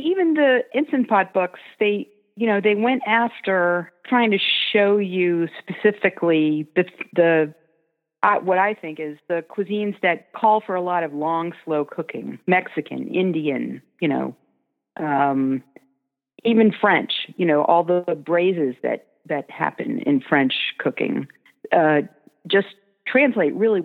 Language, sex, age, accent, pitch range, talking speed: English, female, 50-69, American, 145-195 Hz, 145 wpm